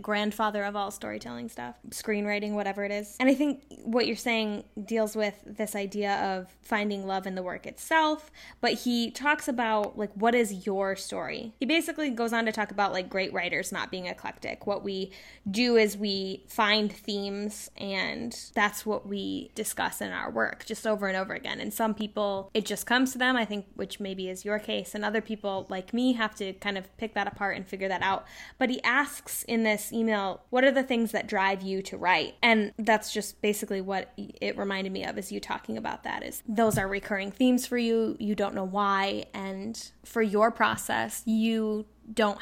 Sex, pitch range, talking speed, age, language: female, 200-230 Hz, 205 wpm, 10-29, English